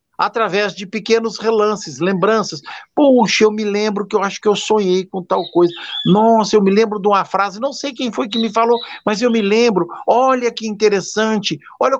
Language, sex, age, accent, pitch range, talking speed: Portuguese, male, 50-69, Brazilian, 165-215 Hz, 200 wpm